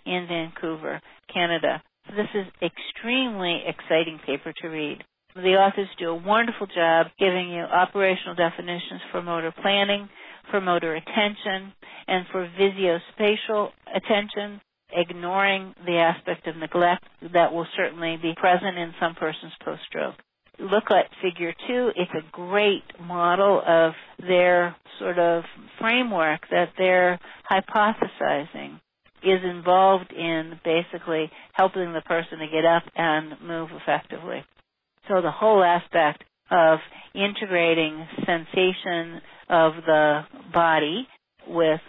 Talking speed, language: 120 wpm, English